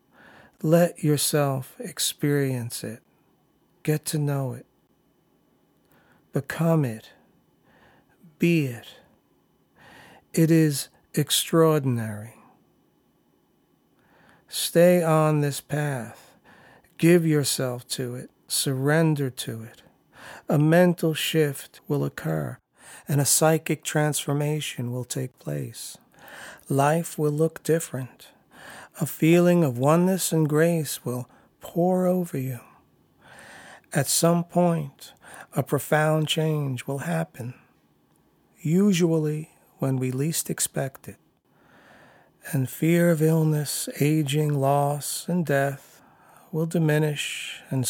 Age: 50-69